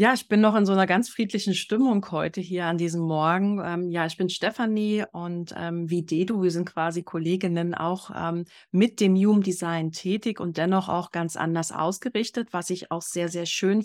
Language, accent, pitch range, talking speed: German, German, 170-200 Hz, 205 wpm